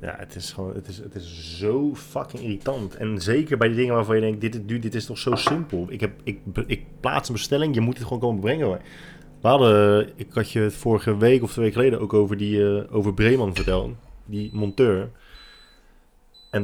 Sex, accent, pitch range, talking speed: male, Dutch, 100-120 Hz, 220 wpm